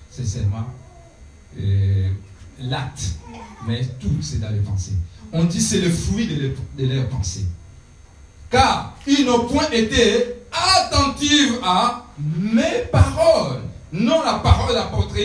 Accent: French